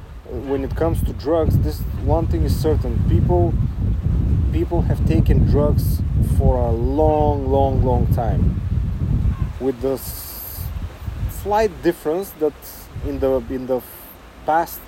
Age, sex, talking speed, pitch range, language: 30-49, male, 125 wpm, 105-140 Hz, English